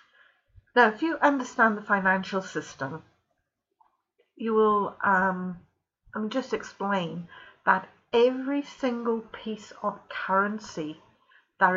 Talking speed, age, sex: 95 wpm, 50-69, female